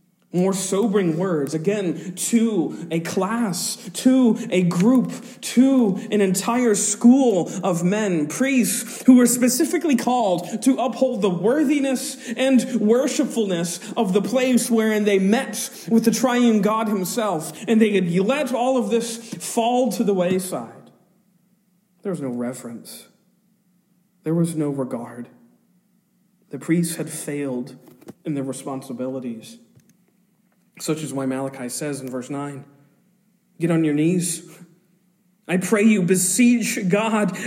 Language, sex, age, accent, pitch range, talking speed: English, male, 40-59, American, 185-235 Hz, 130 wpm